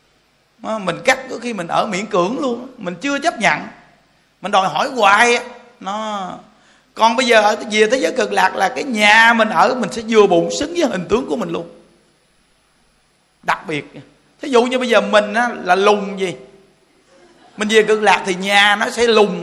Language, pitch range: Vietnamese, 200-250 Hz